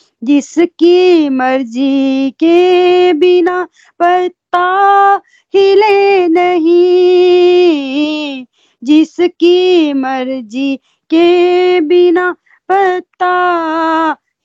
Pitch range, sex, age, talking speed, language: 255-350 Hz, female, 30-49, 50 wpm, Hindi